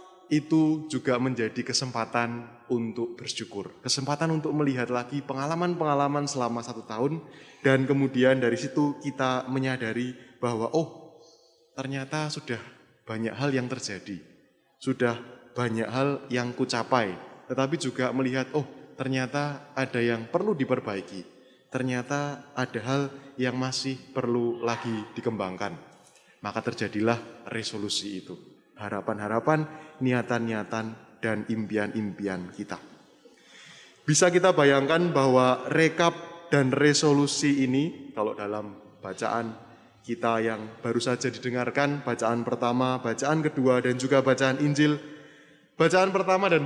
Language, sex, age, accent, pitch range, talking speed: Indonesian, male, 20-39, native, 115-145 Hz, 110 wpm